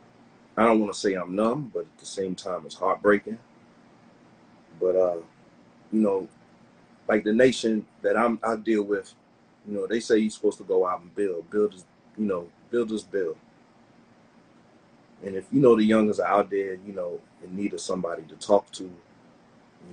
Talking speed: 185 wpm